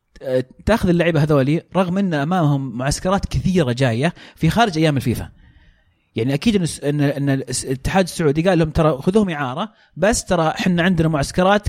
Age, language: 30-49, Arabic